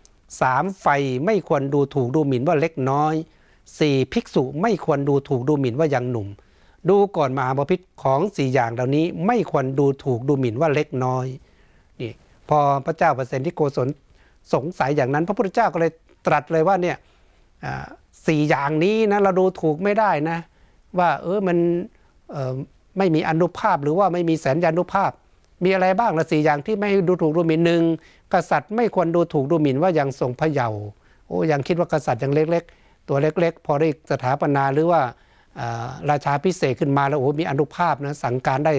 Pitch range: 140-175 Hz